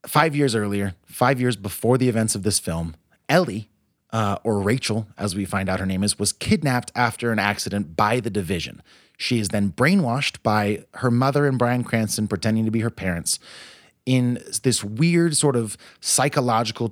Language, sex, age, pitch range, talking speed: English, male, 30-49, 100-125 Hz, 180 wpm